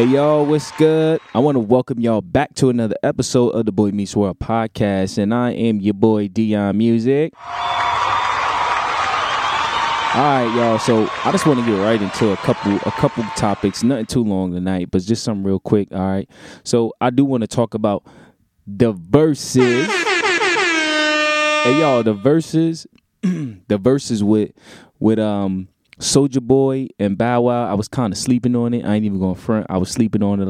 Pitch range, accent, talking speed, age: 100-130 Hz, American, 170 wpm, 20-39